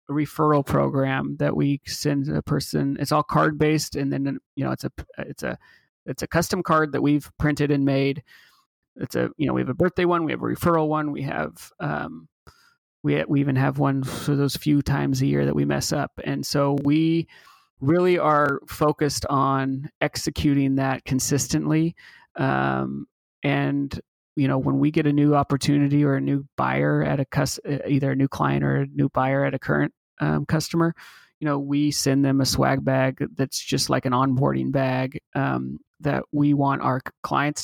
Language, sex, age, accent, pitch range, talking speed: English, male, 30-49, American, 125-150 Hz, 190 wpm